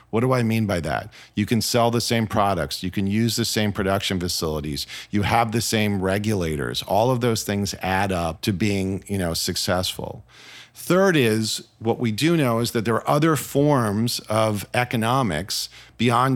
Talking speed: 175 wpm